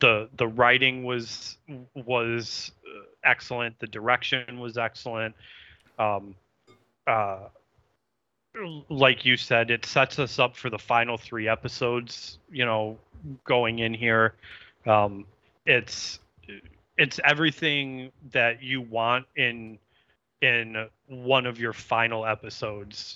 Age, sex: 30-49, male